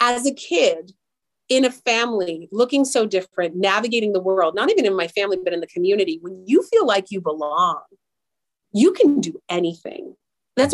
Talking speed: 180 wpm